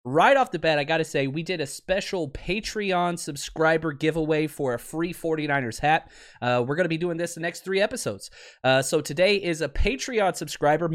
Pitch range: 135-170 Hz